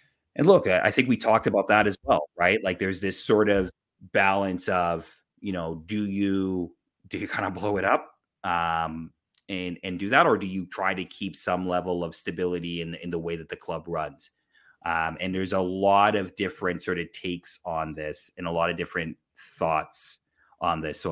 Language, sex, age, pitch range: English, male, 30-49, 85-100 Hz